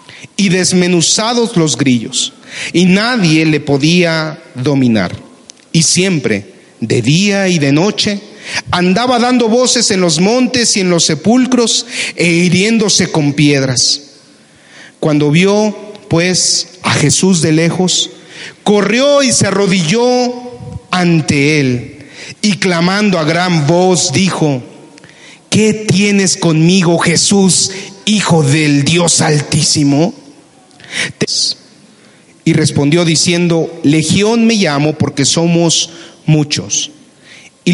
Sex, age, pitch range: male, 40-59, 155-200 Hz